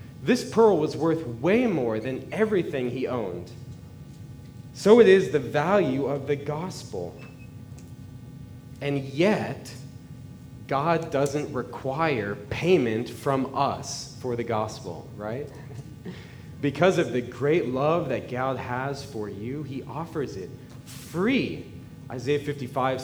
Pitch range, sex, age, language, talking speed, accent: 120-155 Hz, male, 30-49, English, 120 wpm, American